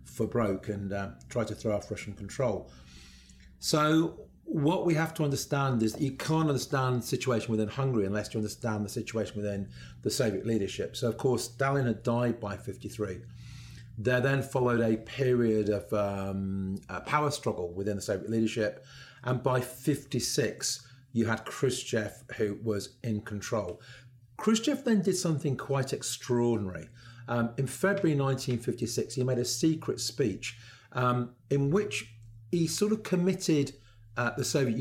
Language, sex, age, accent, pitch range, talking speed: English, male, 40-59, British, 110-135 Hz, 155 wpm